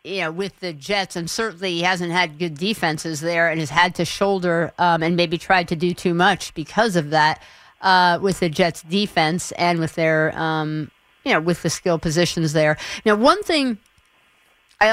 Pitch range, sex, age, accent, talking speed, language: 165-200 Hz, female, 50-69, American, 200 wpm, English